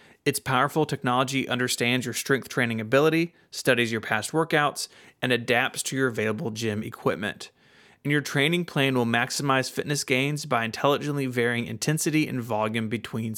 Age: 30-49